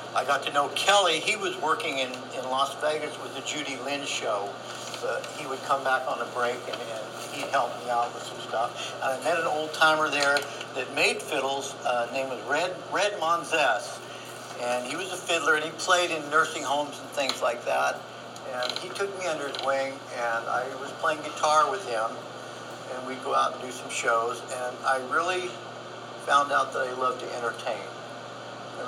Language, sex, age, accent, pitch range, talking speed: English, male, 60-79, American, 125-150 Hz, 195 wpm